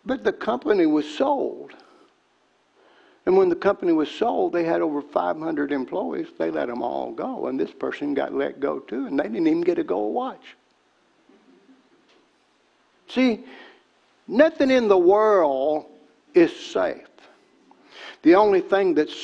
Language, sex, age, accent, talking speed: English, male, 60-79, American, 145 wpm